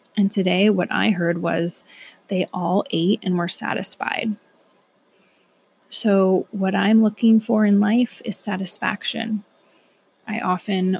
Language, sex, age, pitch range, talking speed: English, female, 20-39, 185-220 Hz, 125 wpm